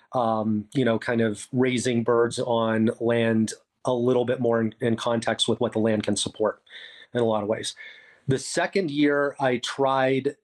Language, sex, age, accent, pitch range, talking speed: English, male, 30-49, American, 110-130 Hz, 185 wpm